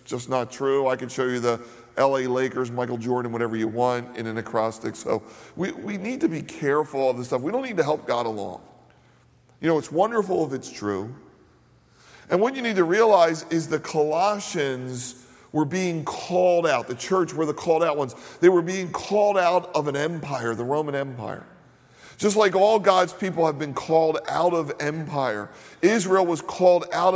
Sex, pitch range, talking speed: male, 130-180 Hz, 195 wpm